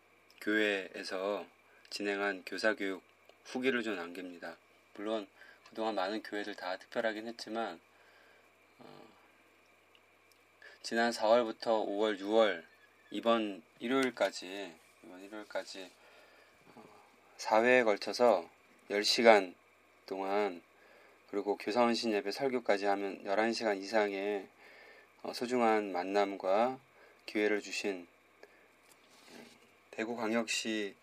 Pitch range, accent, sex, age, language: 100-115 Hz, native, male, 20-39, Korean